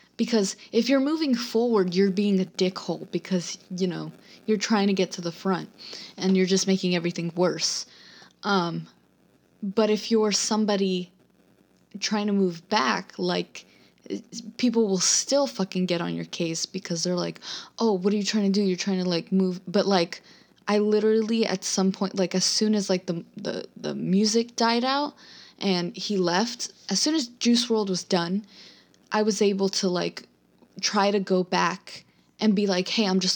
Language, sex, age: English, female, 20-39